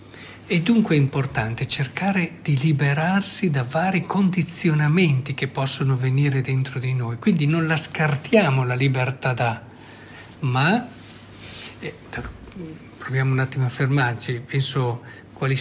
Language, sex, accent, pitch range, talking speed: Italian, male, native, 120-150 Hz, 125 wpm